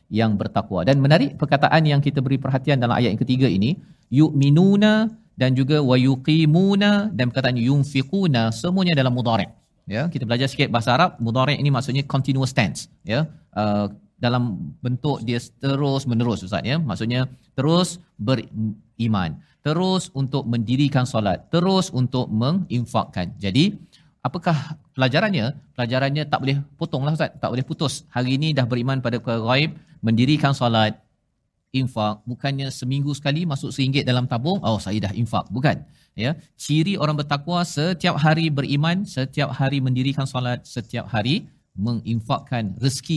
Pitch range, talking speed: 120-155 Hz, 140 wpm